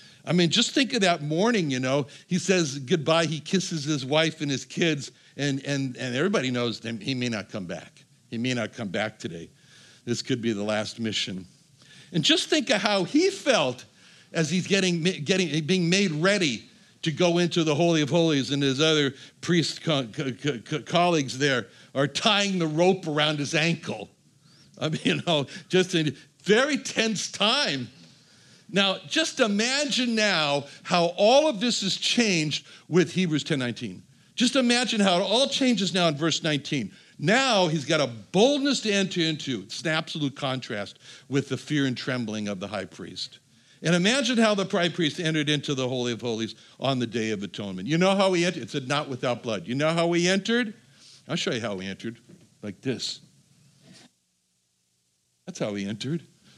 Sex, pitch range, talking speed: male, 125-185 Hz, 190 wpm